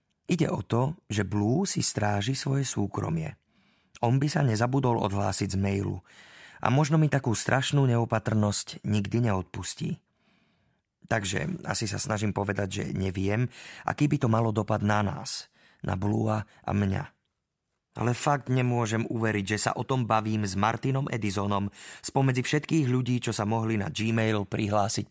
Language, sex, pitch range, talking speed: Slovak, male, 105-130 Hz, 150 wpm